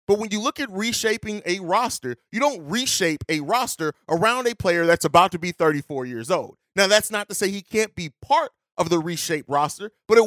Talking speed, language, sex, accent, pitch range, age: 220 wpm, English, male, American, 175-215 Hz, 30-49